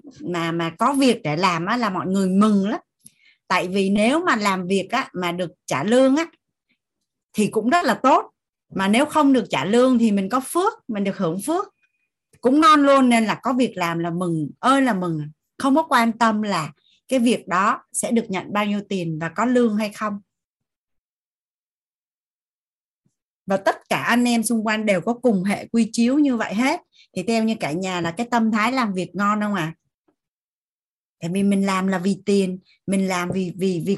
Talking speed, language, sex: 210 wpm, Vietnamese, female